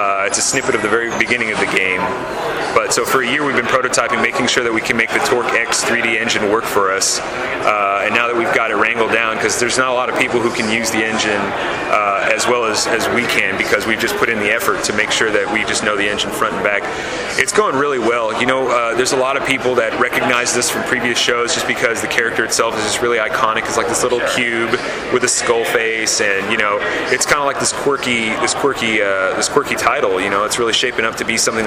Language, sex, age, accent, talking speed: English, male, 30-49, American, 265 wpm